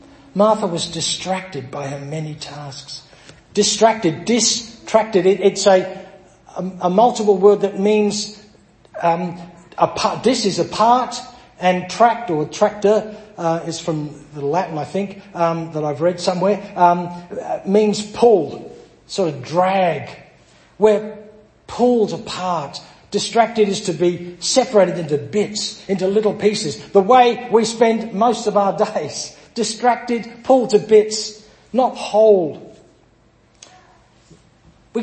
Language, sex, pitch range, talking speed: English, male, 170-215 Hz, 130 wpm